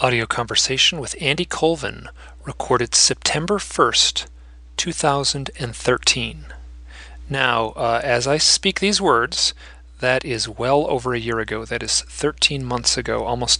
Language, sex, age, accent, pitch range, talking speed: English, male, 40-59, American, 110-150 Hz, 130 wpm